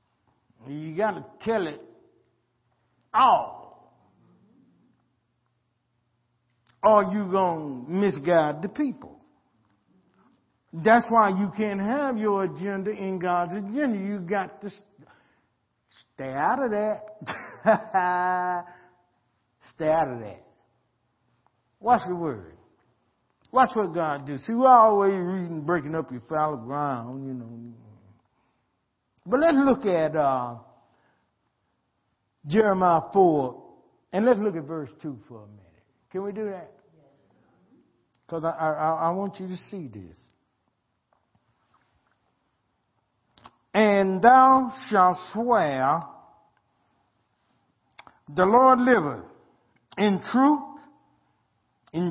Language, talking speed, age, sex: English, 105 wpm, 60-79, male